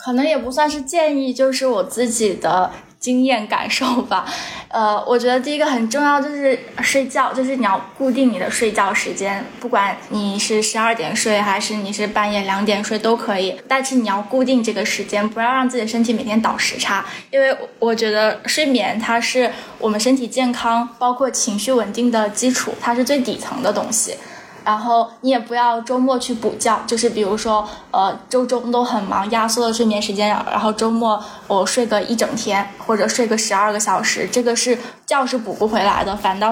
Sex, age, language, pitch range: female, 10-29, Chinese, 210-250 Hz